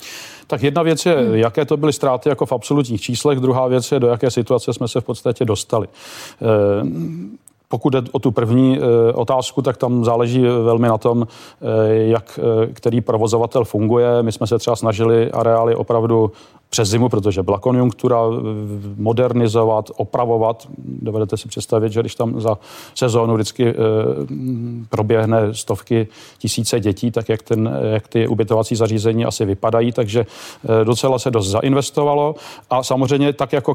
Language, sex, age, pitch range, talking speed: Czech, male, 40-59, 115-130 Hz, 150 wpm